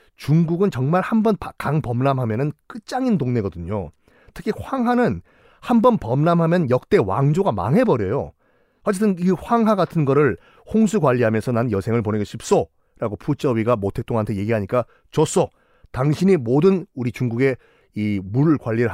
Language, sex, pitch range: Korean, male, 120-185 Hz